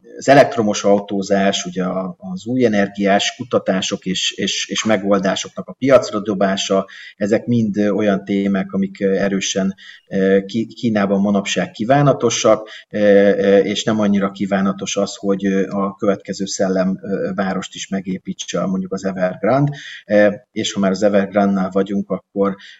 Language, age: Hungarian, 30-49